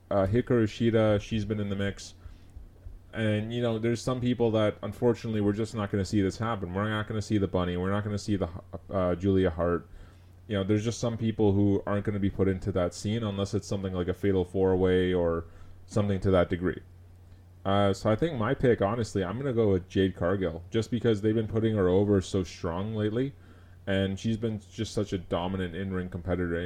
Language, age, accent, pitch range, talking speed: English, 30-49, American, 90-105 Hz, 225 wpm